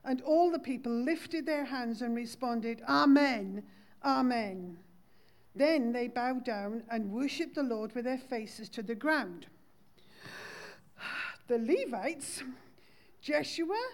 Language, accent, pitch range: English, British, 235-300 Hz